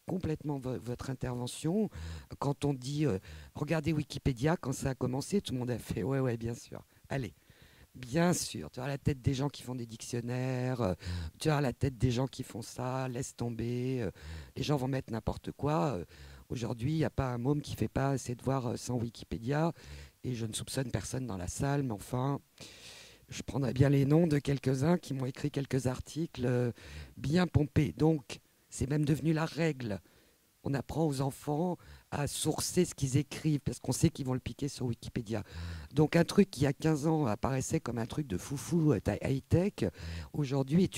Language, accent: French, French